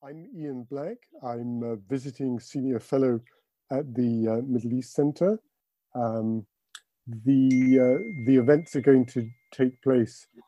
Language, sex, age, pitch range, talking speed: English, male, 50-69, 120-145 Hz, 135 wpm